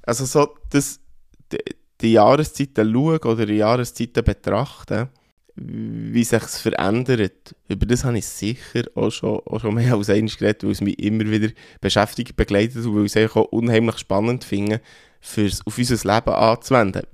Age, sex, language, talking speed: 20-39, male, German, 160 wpm